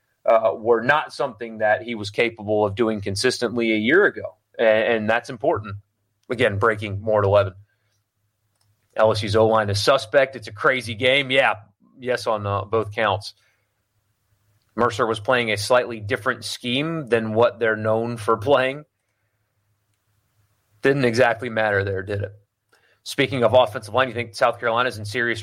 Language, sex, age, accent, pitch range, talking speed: English, male, 30-49, American, 105-125 Hz, 155 wpm